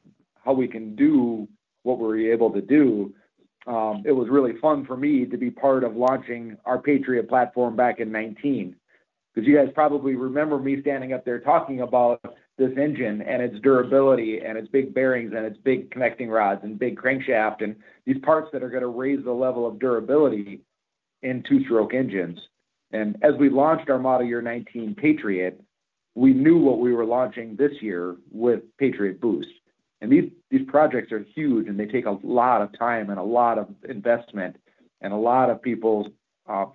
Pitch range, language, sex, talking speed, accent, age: 115-140 Hz, English, male, 185 wpm, American, 50-69